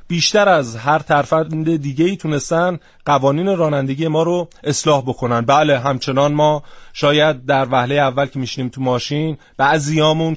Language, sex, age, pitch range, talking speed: Persian, male, 30-49, 130-155 Hz, 150 wpm